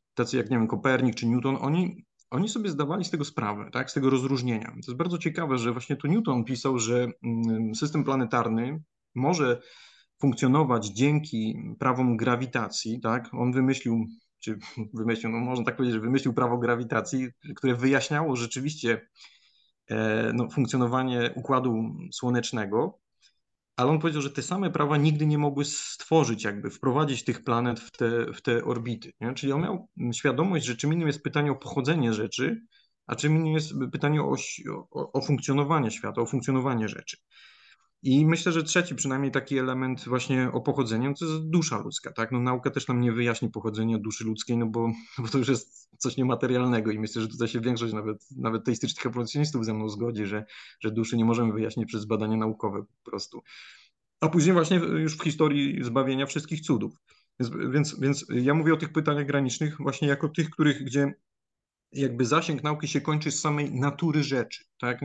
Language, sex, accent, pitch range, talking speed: Polish, male, native, 120-150 Hz, 175 wpm